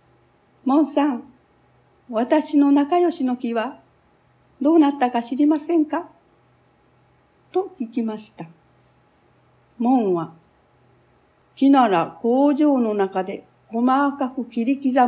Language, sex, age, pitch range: Japanese, female, 50-69, 205-295 Hz